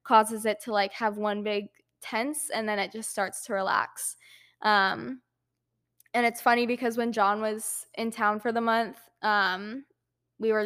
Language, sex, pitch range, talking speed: English, female, 205-240 Hz, 175 wpm